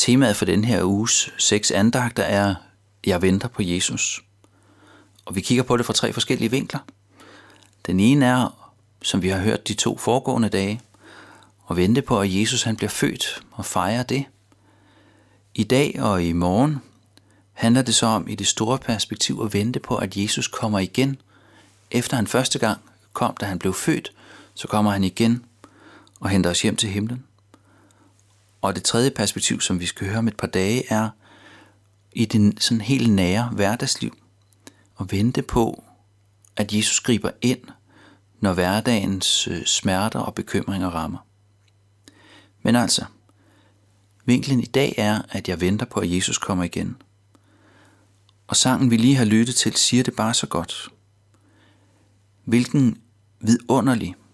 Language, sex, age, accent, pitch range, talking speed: Danish, male, 30-49, native, 100-115 Hz, 155 wpm